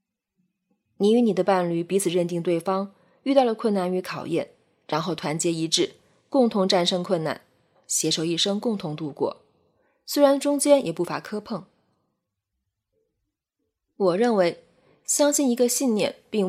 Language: Chinese